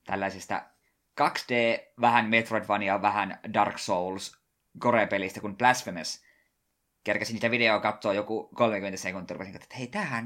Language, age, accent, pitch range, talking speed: Finnish, 20-39, native, 95-120 Hz, 110 wpm